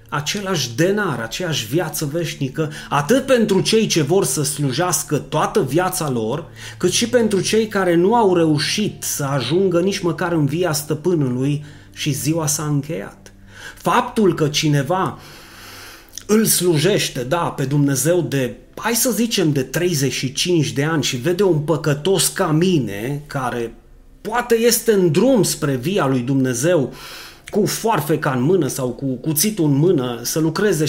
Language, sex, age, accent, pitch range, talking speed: Romanian, male, 30-49, native, 145-190 Hz, 150 wpm